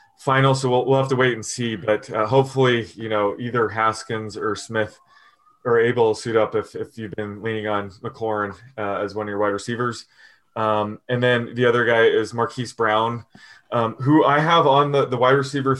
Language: English